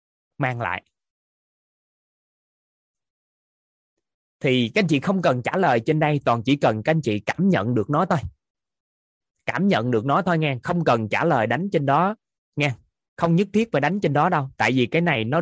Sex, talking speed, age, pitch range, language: male, 190 wpm, 20-39, 130-185 Hz, Vietnamese